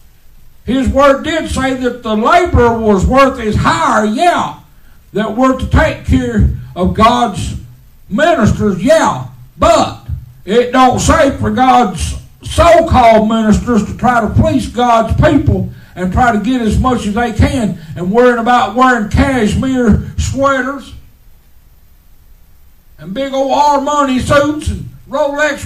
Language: English